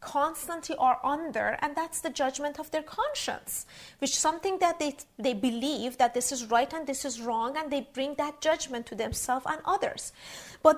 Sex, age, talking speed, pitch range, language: female, 30-49, 190 wpm, 245-305 Hz, English